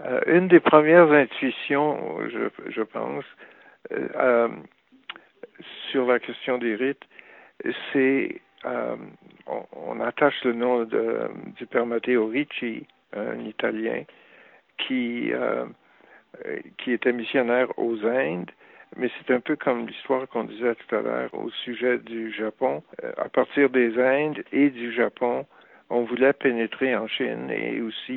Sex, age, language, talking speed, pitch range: male, 60-79, French, 130 wpm, 115-130 Hz